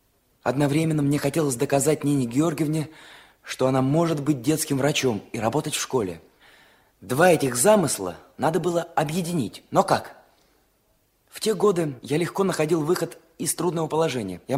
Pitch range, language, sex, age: 125-180 Hz, Russian, male, 20-39